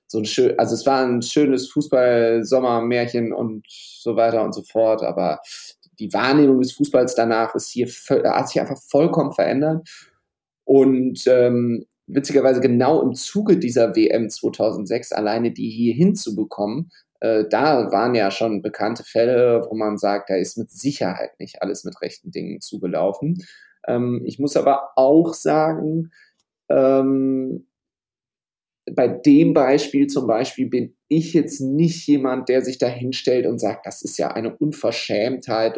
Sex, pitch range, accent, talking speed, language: male, 115-140 Hz, German, 150 wpm, German